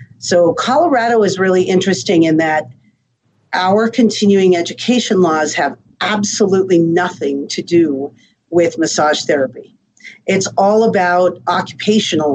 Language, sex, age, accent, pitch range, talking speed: English, female, 50-69, American, 155-200 Hz, 110 wpm